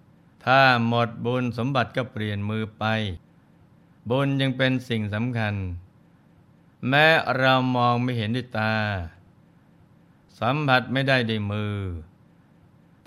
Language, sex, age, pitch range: Thai, male, 20-39, 110-135 Hz